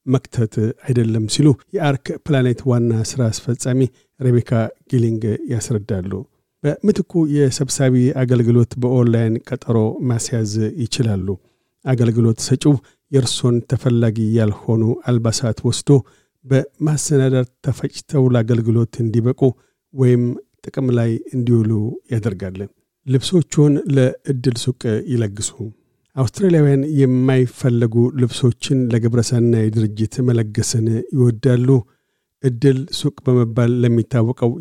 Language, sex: Amharic, male